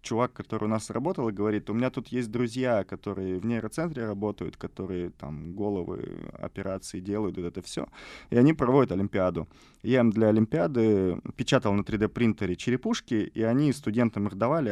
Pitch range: 95-115 Hz